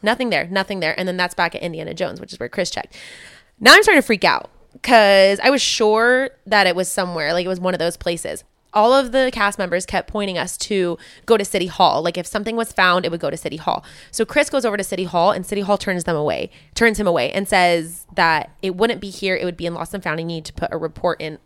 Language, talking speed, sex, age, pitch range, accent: English, 275 wpm, female, 20-39, 175-215 Hz, American